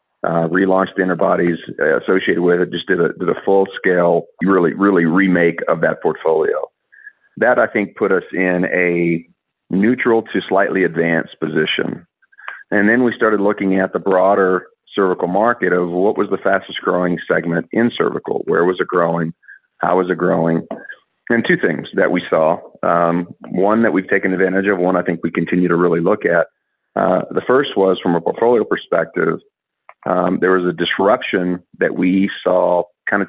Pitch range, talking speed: 85-100 Hz, 175 wpm